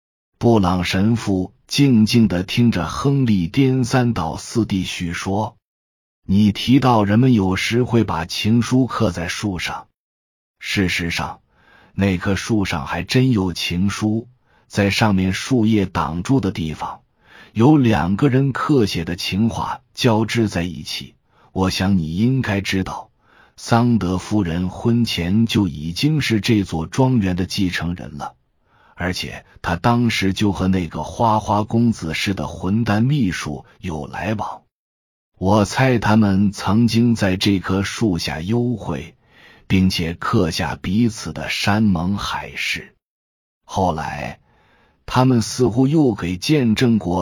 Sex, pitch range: male, 85-115 Hz